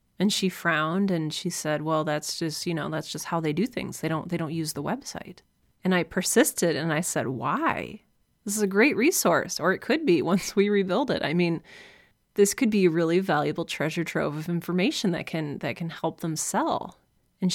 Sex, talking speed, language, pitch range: female, 220 wpm, English, 165-200 Hz